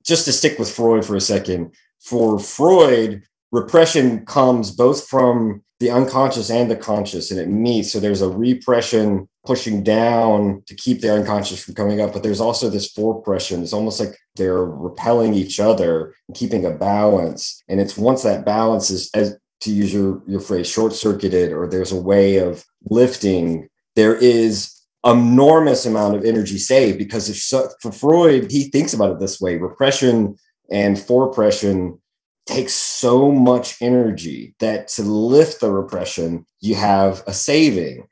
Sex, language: male, English